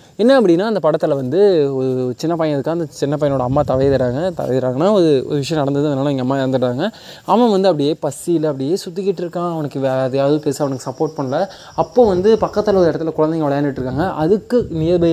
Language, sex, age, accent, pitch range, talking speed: Tamil, male, 20-39, native, 135-175 Hz, 165 wpm